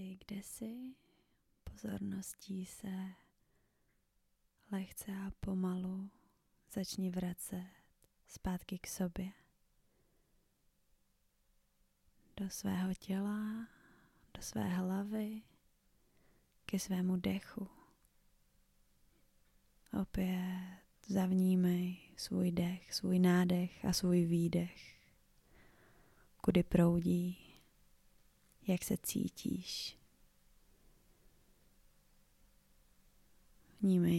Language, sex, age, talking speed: Czech, female, 20-39, 60 wpm